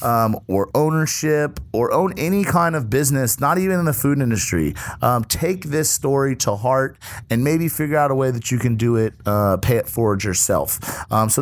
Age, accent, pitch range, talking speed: 30-49, American, 110-135 Hz, 205 wpm